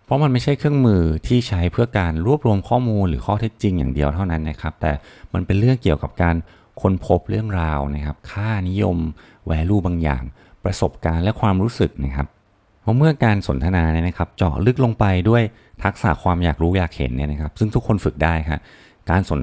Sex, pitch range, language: male, 75-100 Hz, Thai